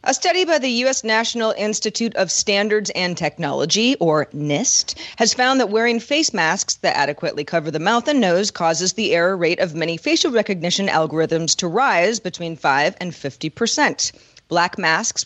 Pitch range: 170-215 Hz